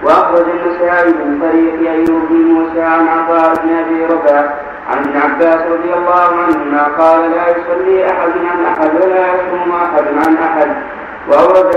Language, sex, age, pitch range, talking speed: Arabic, male, 40-59, 160-175 Hz, 150 wpm